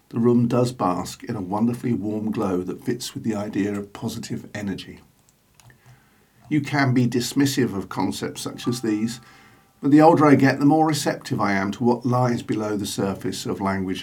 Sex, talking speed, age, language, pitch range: male, 190 wpm, 50-69, English, 110-135 Hz